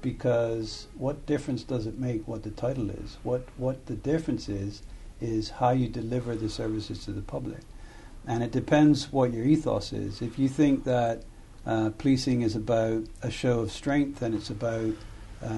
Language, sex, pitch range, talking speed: English, male, 110-130 Hz, 175 wpm